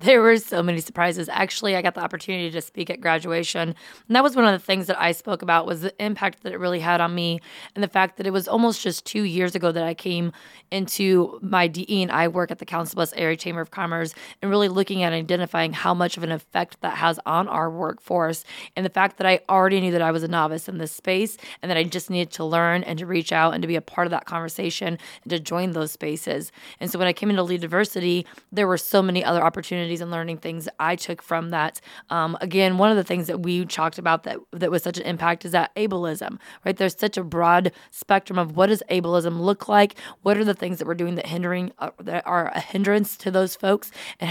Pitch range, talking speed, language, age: 170-195 Hz, 250 wpm, English, 20-39